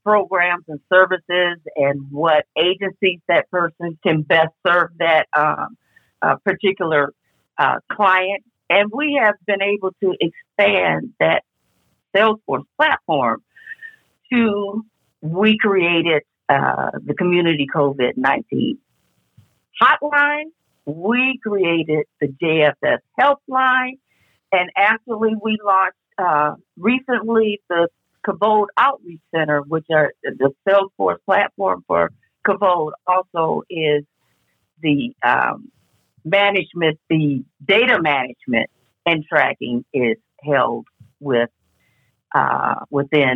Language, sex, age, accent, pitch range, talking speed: English, female, 50-69, American, 150-210 Hz, 100 wpm